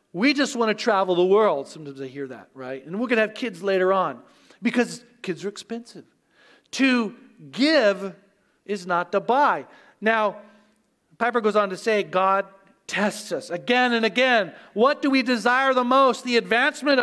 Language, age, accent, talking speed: English, 40-59, American, 175 wpm